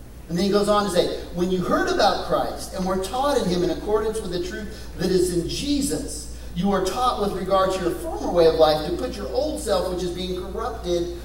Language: English